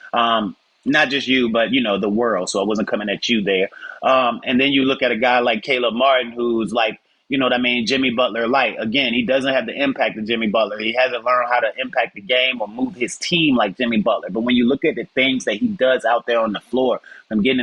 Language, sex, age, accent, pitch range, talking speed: English, male, 30-49, American, 115-130 Hz, 260 wpm